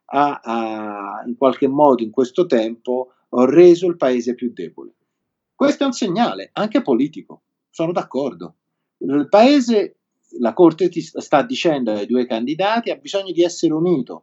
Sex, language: male, Italian